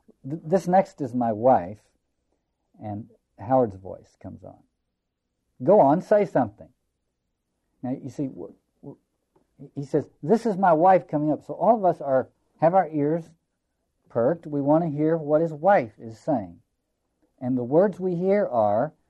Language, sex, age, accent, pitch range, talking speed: English, male, 50-69, American, 105-155 Hz, 160 wpm